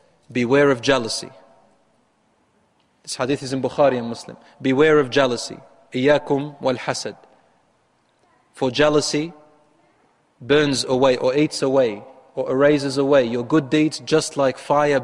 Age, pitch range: 30-49, 130-155 Hz